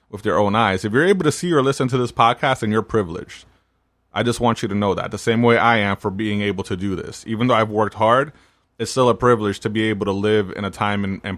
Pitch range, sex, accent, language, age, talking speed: 95-115 Hz, male, American, English, 30-49, 280 wpm